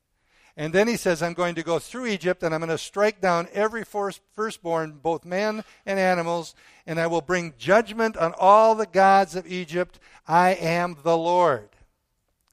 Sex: male